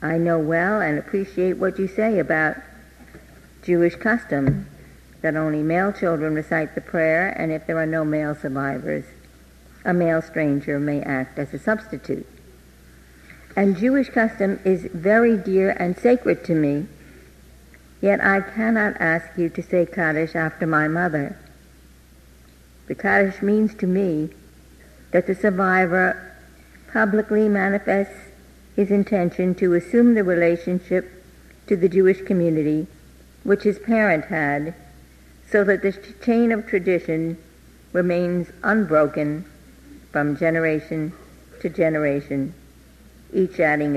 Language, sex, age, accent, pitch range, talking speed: English, female, 60-79, American, 140-190 Hz, 125 wpm